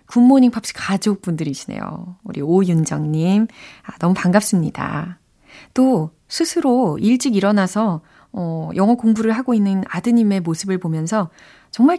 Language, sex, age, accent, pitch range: Korean, female, 30-49, native, 170-245 Hz